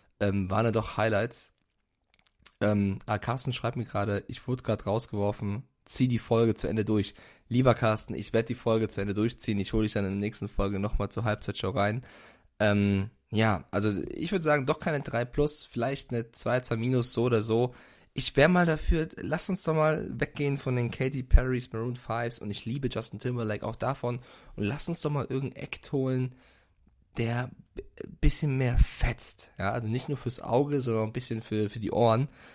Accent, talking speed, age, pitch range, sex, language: German, 200 wpm, 20-39, 105-125 Hz, male, German